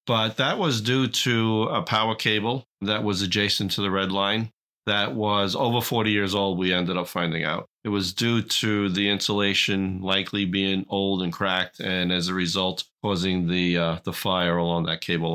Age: 40-59